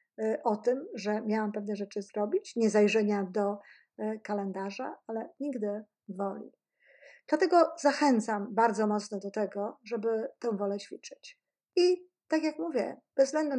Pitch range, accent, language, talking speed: 210-275 Hz, native, Polish, 135 wpm